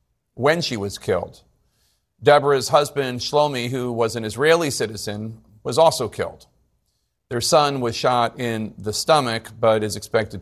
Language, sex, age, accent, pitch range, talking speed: English, male, 40-59, American, 105-130 Hz, 145 wpm